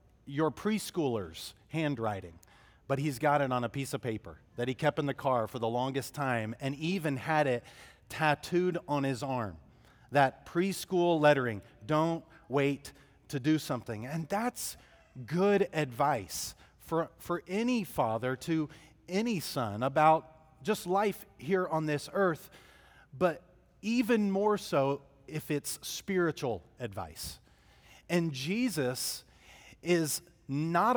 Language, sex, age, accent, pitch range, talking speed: English, male, 40-59, American, 130-175 Hz, 130 wpm